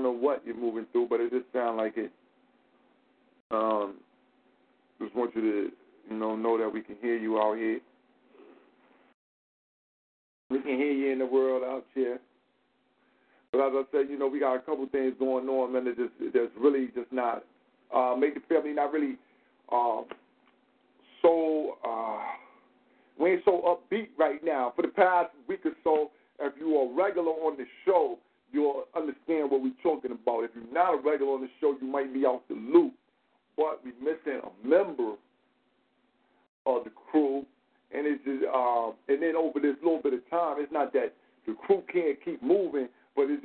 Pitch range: 125-165 Hz